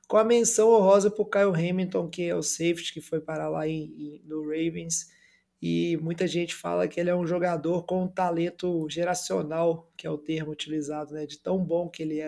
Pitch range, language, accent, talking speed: 160-190 Hz, Portuguese, Brazilian, 215 wpm